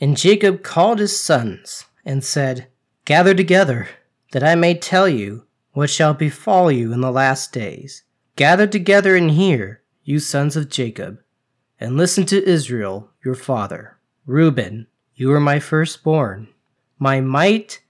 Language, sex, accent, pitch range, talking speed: English, male, American, 130-180 Hz, 145 wpm